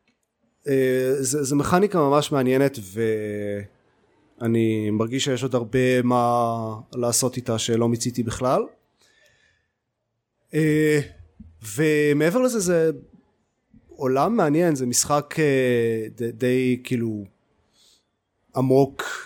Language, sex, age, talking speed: Hebrew, male, 30-49, 85 wpm